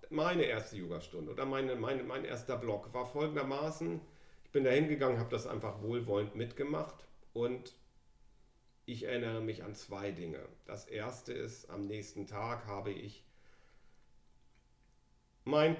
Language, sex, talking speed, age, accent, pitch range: German, male, 135 wpm, 40-59, German, 105-125 Hz